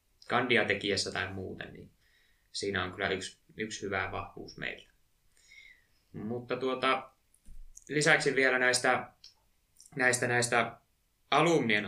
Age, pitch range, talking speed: 20-39, 100-115 Hz, 100 wpm